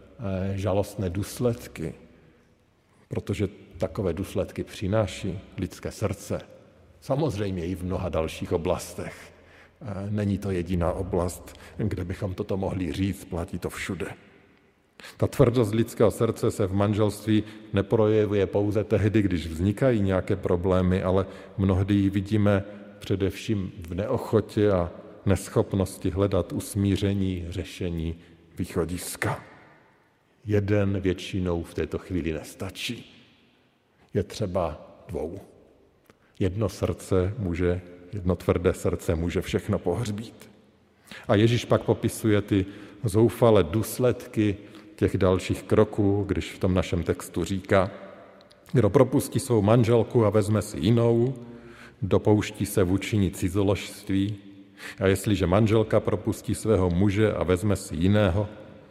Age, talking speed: 50-69, 110 wpm